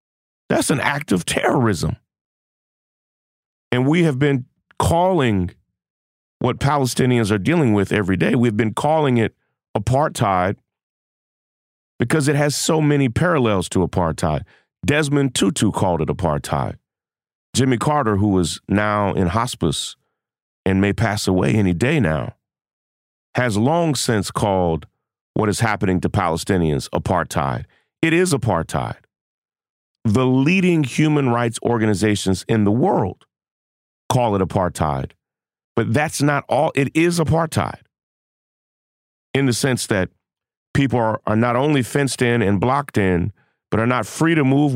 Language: English